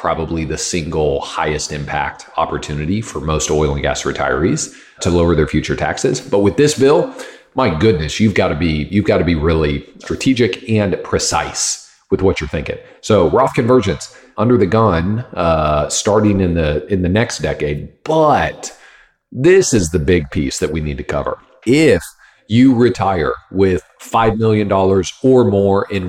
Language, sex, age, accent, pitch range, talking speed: English, male, 40-59, American, 80-110 Hz, 170 wpm